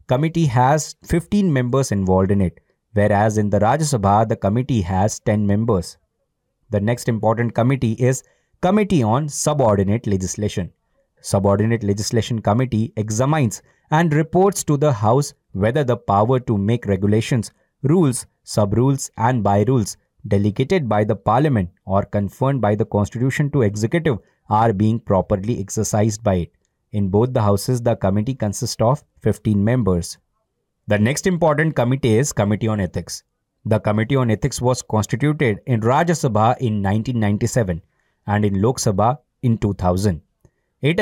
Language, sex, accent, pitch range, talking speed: Hindi, male, native, 105-135 Hz, 145 wpm